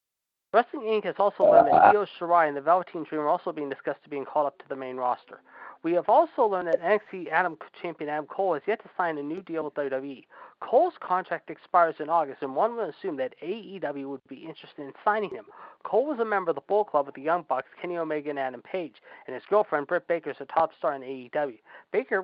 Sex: male